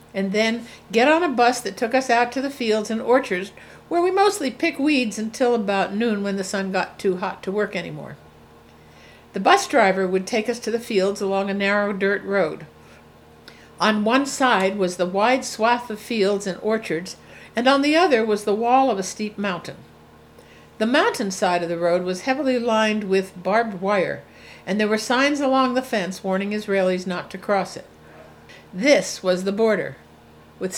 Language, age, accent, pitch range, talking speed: English, 60-79, American, 185-235 Hz, 190 wpm